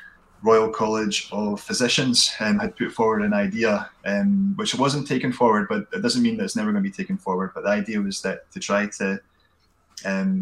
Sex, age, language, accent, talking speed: male, 20-39, English, British, 205 wpm